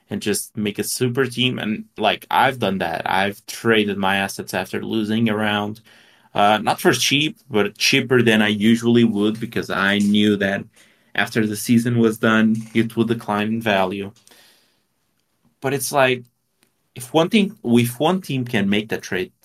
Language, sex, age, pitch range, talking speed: English, male, 30-49, 105-125 Hz, 175 wpm